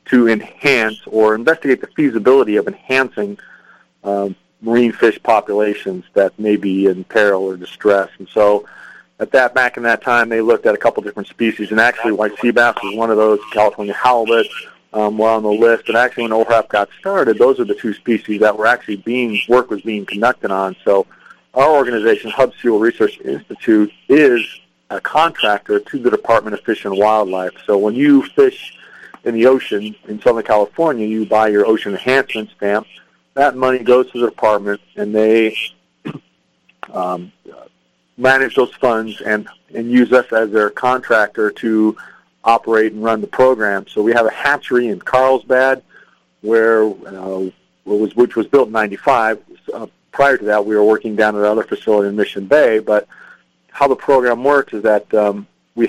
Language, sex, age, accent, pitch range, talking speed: English, male, 40-59, American, 105-125 Hz, 180 wpm